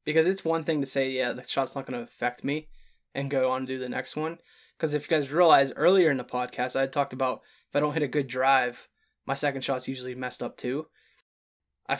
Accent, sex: American, male